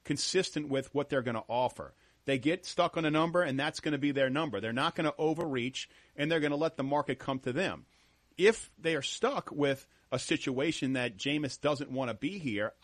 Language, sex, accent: English, male, American